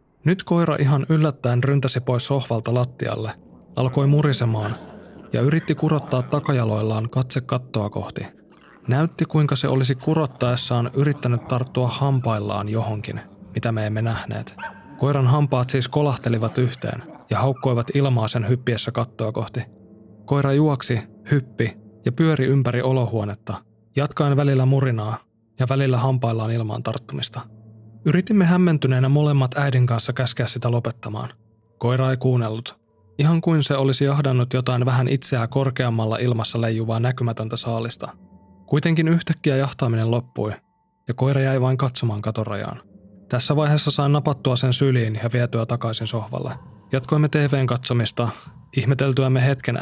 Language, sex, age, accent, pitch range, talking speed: Finnish, male, 20-39, native, 115-140 Hz, 130 wpm